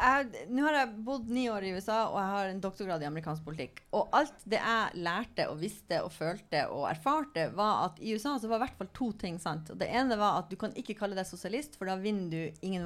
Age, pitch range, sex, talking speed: 30-49, 165-225 Hz, female, 260 wpm